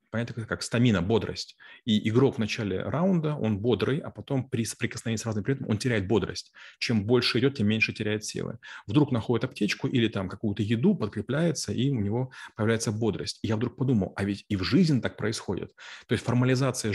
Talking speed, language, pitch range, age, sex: 195 wpm, Russian, 100-125 Hz, 30-49, male